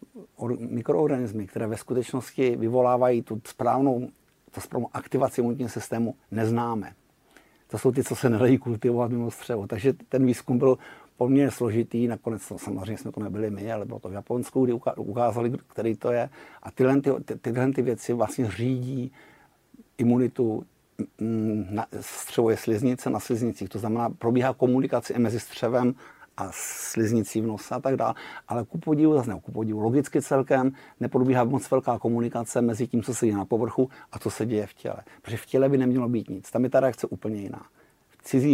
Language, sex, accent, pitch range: Czech, male, native, 110-130 Hz